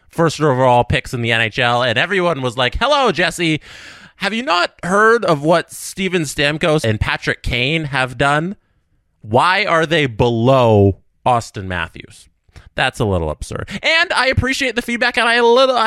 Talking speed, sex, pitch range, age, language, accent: 165 wpm, male, 115-170 Hz, 30-49, English, American